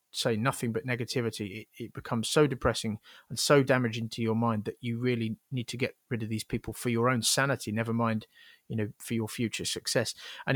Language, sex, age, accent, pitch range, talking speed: English, male, 30-49, British, 120-145 Hz, 210 wpm